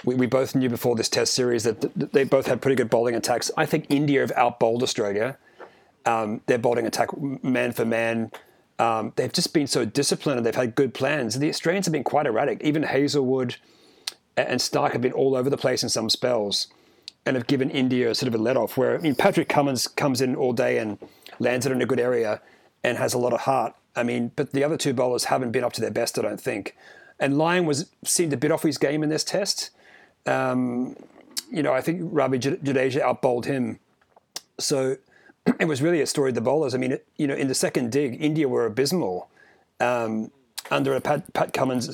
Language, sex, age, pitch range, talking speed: English, male, 30-49, 125-145 Hz, 220 wpm